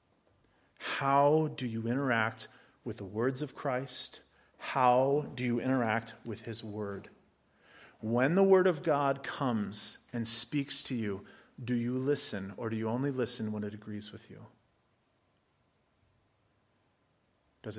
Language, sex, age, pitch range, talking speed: English, male, 30-49, 115-165 Hz, 135 wpm